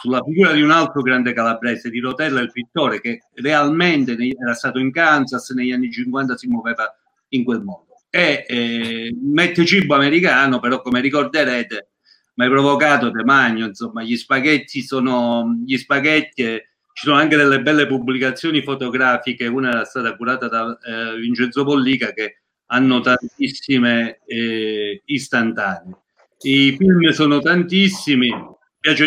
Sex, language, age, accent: male, Italian, 50-69, native